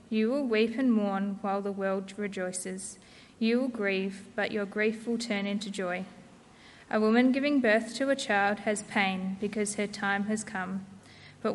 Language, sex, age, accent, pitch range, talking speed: English, female, 20-39, Australian, 195-220 Hz, 175 wpm